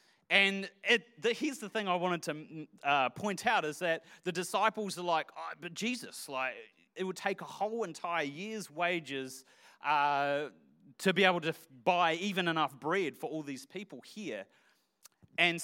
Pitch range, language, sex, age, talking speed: 160-220 Hz, English, male, 30-49, 175 wpm